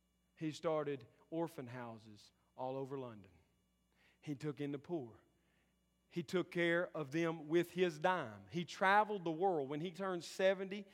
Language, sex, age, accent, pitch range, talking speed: English, male, 40-59, American, 145-190 Hz, 155 wpm